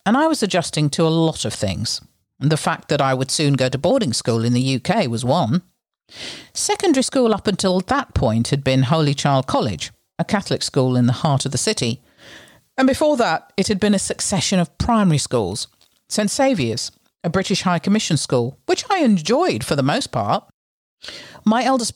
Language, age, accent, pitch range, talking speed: English, 50-69, British, 125-195 Hz, 195 wpm